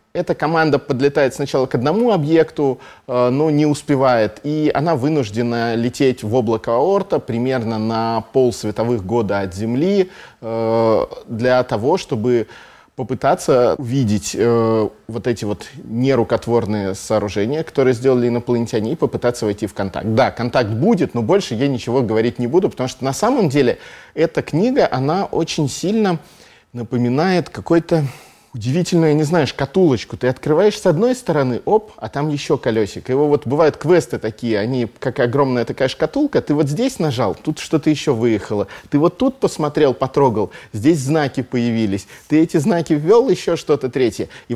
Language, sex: Russian, male